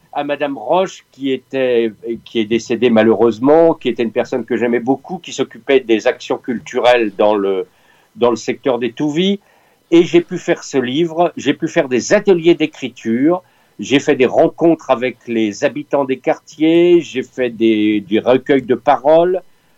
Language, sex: French, male